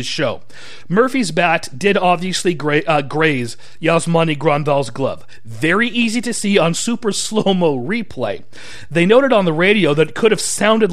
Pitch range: 155-210 Hz